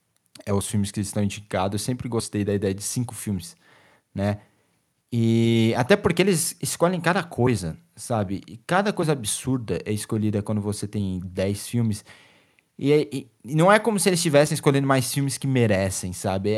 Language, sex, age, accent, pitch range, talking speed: Portuguese, male, 20-39, Brazilian, 115-160 Hz, 175 wpm